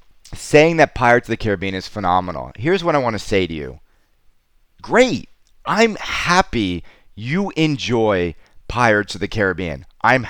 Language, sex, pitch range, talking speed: English, male, 100-145 Hz, 150 wpm